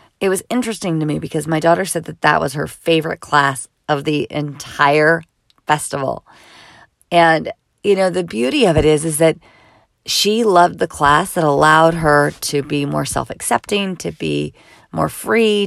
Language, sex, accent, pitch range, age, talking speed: English, female, American, 140-170 Hz, 40-59, 170 wpm